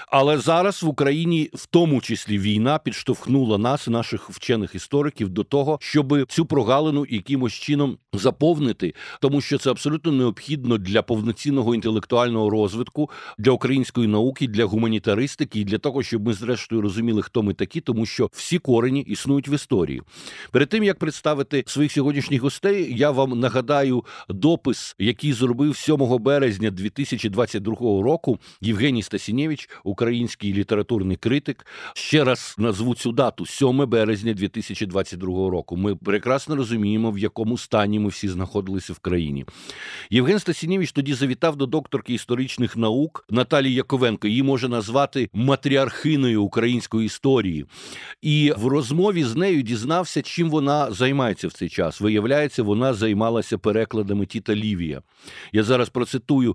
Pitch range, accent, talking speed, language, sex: 110-140 Hz, native, 140 wpm, Ukrainian, male